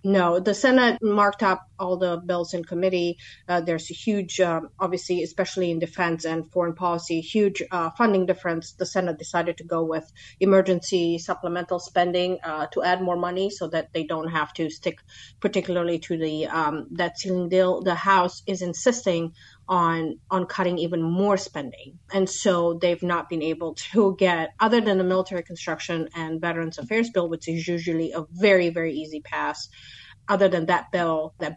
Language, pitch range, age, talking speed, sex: English, 160-185 Hz, 30-49, 180 wpm, female